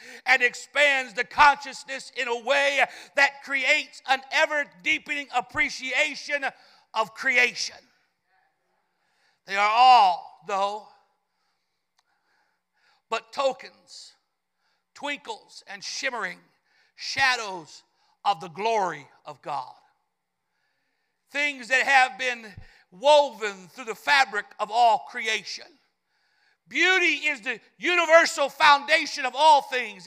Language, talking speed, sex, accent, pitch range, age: English, 95 wpm, male, American, 245-310 Hz, 60-79